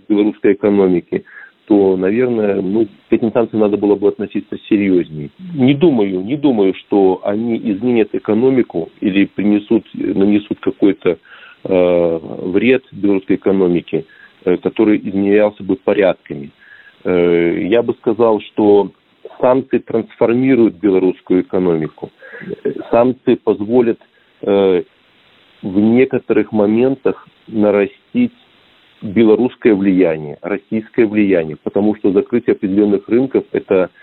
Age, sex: 40-59, male